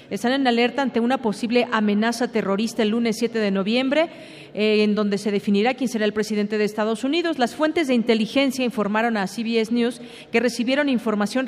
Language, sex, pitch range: Spanish, female, 205-250 Hz